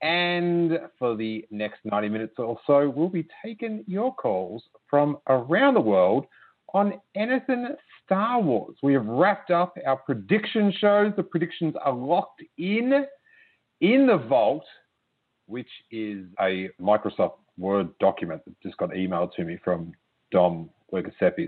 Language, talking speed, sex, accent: English, 140 wpm, male, Australian